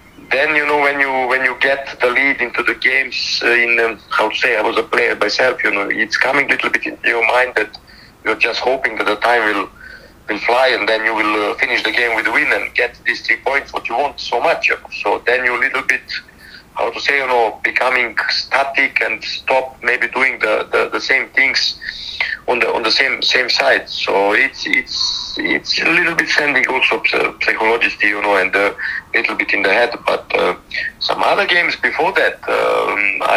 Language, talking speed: Swedish, 220 wpm